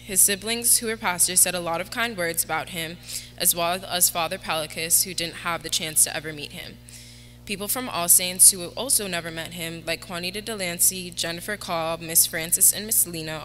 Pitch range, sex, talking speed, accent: 145-185 Hz, female, 205 wpm, American